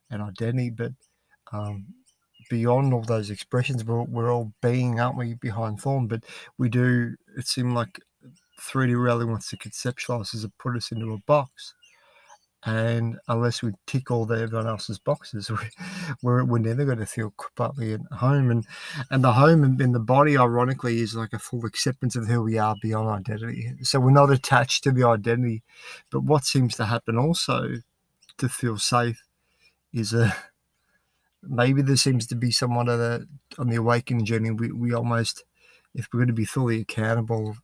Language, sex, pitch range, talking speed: English, male, 115-125 Hz, 175 wpm